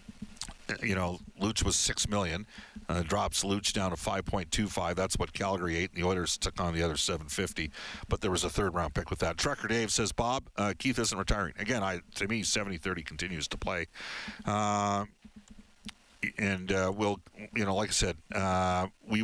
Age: 50-69